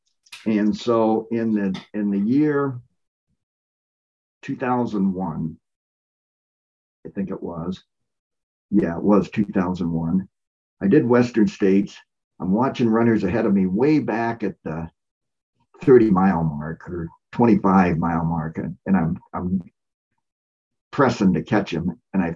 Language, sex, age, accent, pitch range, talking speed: English, male, 50-69, American, 95-125 Hz, 125 wpm